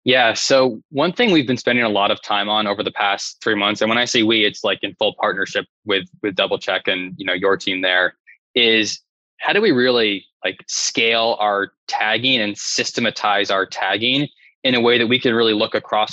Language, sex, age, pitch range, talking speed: English, male, 20-39, 105-125 Hz, 220 wpm